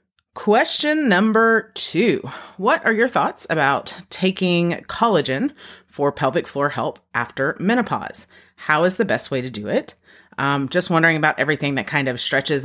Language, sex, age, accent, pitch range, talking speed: English, female, 30-49, American, 140-200 Hz, 155 wpm